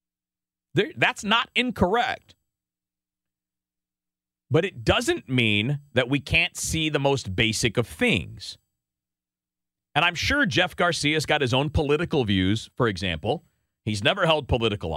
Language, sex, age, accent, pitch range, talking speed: English, male, 40-59, American, 95-155 Hz, 130 wpm